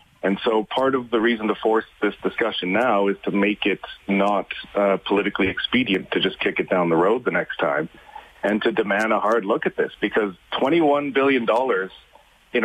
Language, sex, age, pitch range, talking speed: English, male, 40-59, 100-125 Hz, 205 wpm